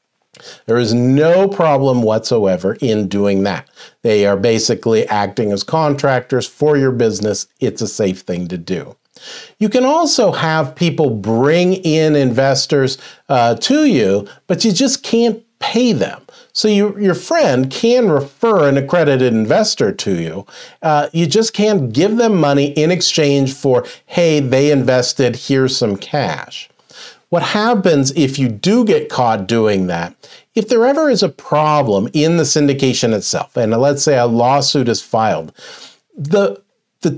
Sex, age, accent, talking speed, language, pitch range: male, 40-59, American, 155 wpm, English, 125-190 Hz